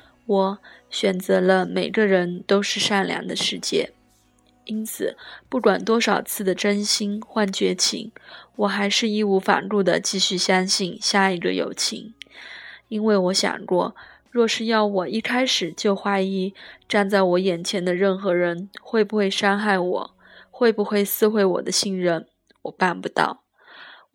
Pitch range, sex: 190-215 Hz, female